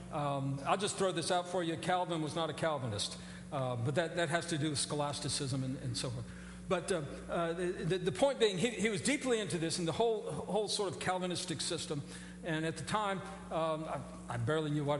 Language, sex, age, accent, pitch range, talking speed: English, male, 50-69, American, 155-220 Hz, 235 wpm